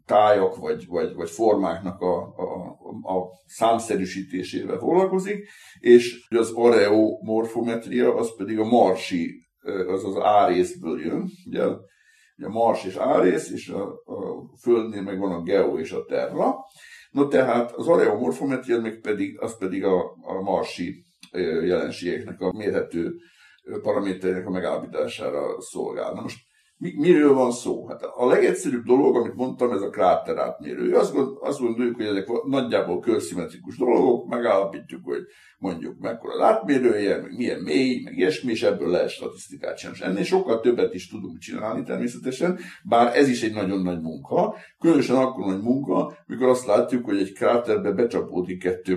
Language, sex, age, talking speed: Hungarian, male, 50-69, 145 wpm